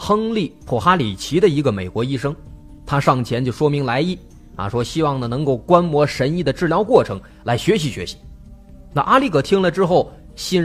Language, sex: Chinese, male